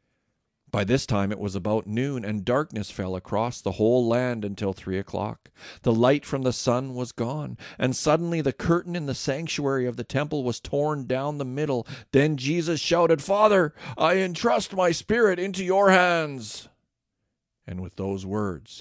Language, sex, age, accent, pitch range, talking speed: English, male, 50-69, American, 110-150 Hz, 170 wpm